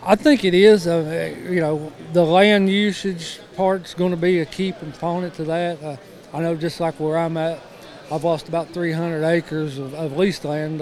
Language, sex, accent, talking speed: English, male, American, 200 wpm